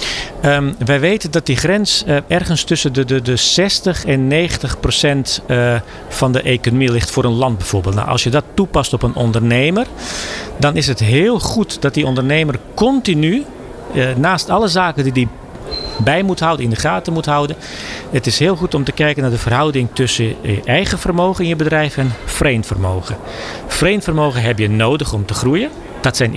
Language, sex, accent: Dutch, male, Dutch